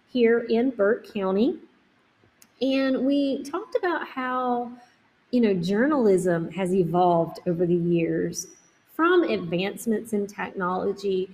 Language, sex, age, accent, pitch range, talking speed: English, female, 30-49, American, 185-230 Hz, 110 wpm